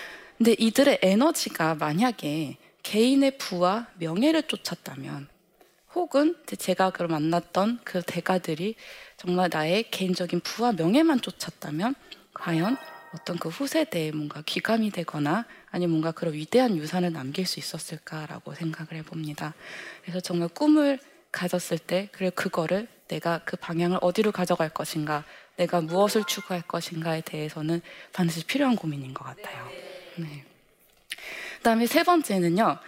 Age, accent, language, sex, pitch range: 20-39, native, Korean, female, 165-230 Hz